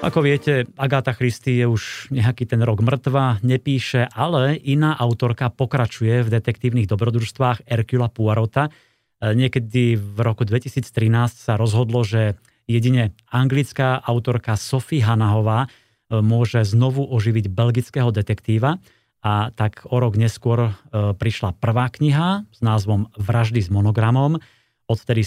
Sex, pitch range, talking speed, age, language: male, 110-130 Hz, 120 wpm, 30-49, Slovak